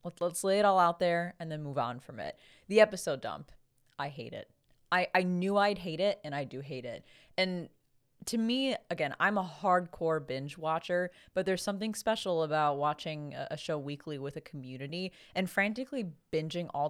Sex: female